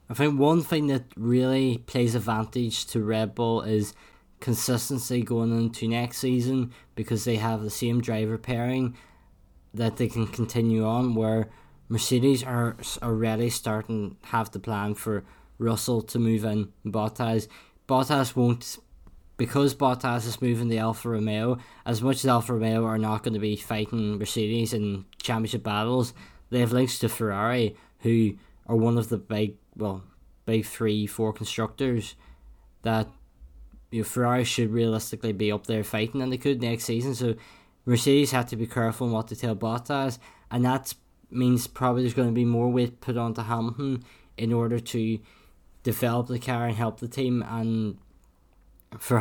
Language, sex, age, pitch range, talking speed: English, male, 10-29, 110-125 Hz, 165 wpm